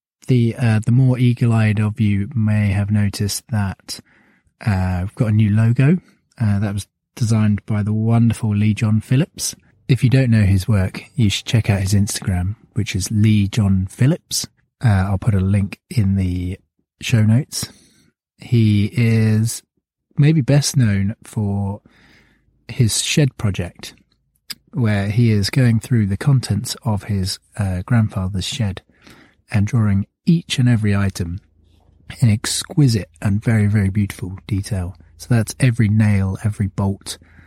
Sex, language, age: male, English, 20-39